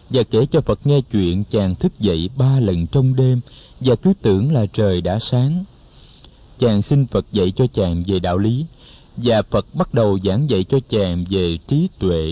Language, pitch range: Vietnamese, 100-135 Hz